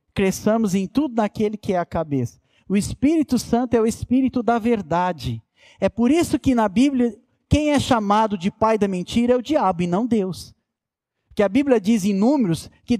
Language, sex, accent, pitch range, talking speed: Portuguese, male, Brazilian, 200-280 Hz, 195 wpm